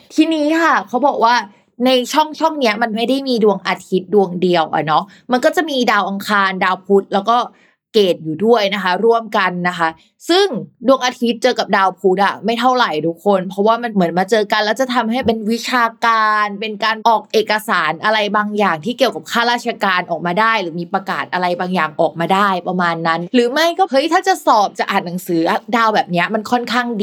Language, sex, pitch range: Thai, female, 190-245 Hz